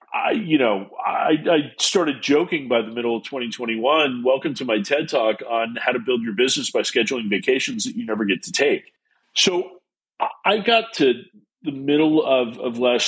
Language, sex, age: English, male, 40-59